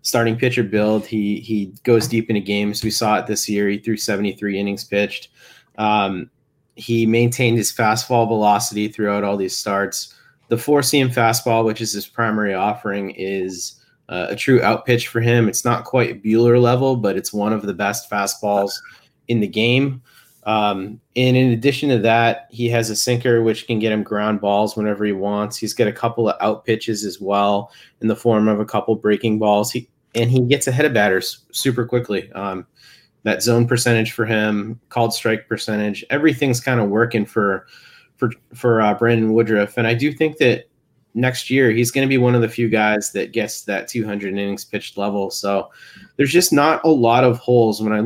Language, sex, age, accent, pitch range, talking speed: English, male, 30-49, American, 105-120 Hz, 195 wpm